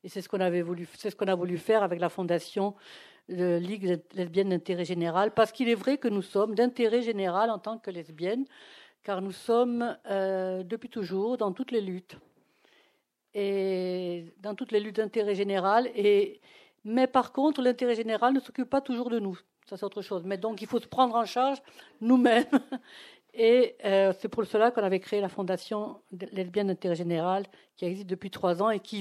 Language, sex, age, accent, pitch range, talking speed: French, female, 60-79, French, 190-240 Hz, 185 wpm